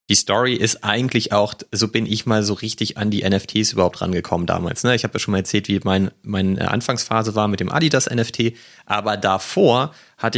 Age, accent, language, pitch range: 30-49, German, German, 100-115 Hz